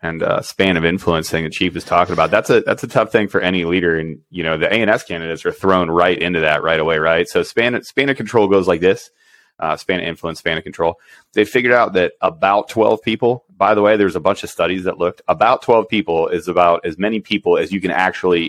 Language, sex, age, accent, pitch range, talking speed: English, male, 30-49, American, 85-105 Hz, 250 wpm